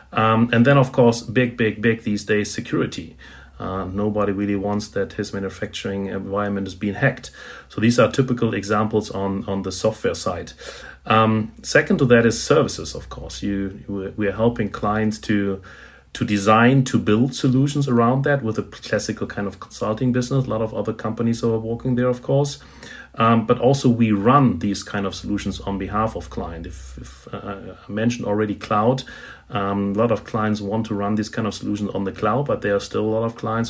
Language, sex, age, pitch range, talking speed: English, male, 40-59, 100-115 Hz, 200 wpm